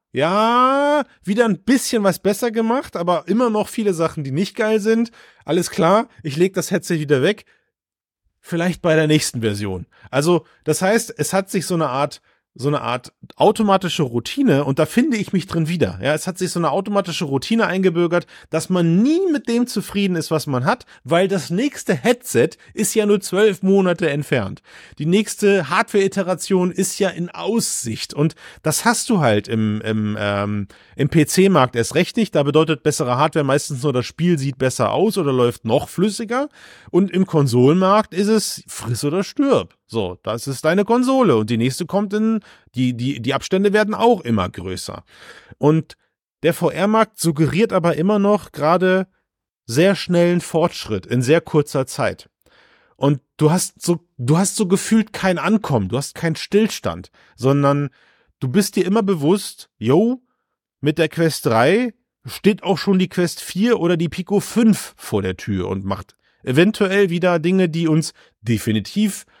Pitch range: 145-205 Hz